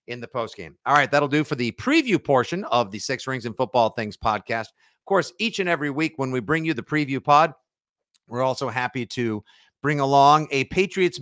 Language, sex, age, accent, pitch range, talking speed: English, male, 50-69, American, 120-160 Hz, 220 wpm